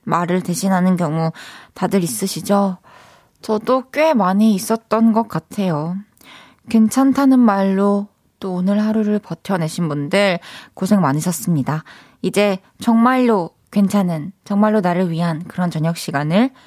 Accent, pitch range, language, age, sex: native, 175-225 Hz, Korean, 20-39, female